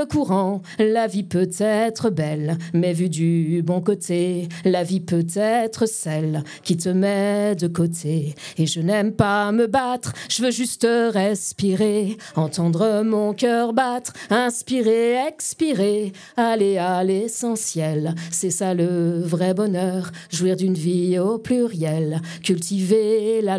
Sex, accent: female, French